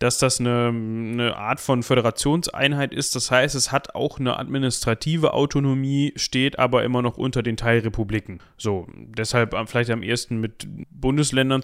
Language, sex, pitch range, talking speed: German, male, 115-140 Hz, 155 wpm